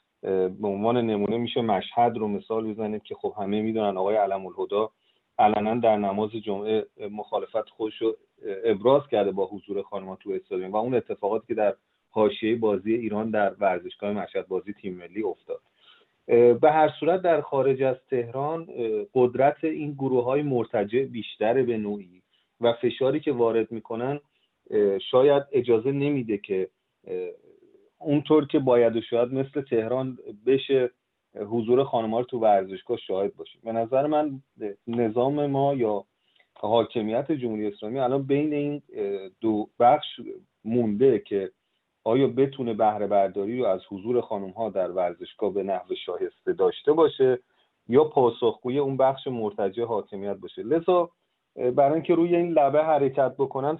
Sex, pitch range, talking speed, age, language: male, 115-165 Hz, 140 wpm, 40-59, Persian